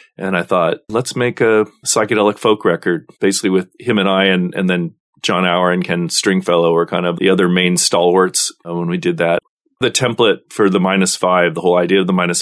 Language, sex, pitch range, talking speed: English, male, 85-100 Hz, 215 wpm